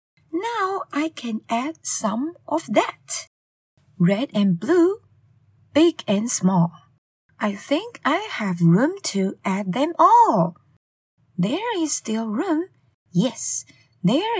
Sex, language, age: female, Chinese, 20-39